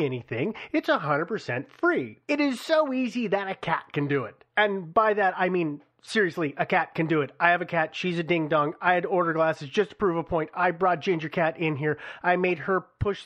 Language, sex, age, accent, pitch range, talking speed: English, male, 30-49, American, 170-255 Hz, 245 wpm